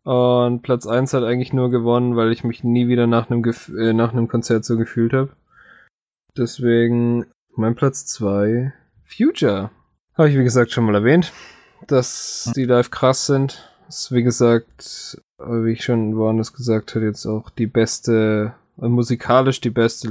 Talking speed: 165 wpm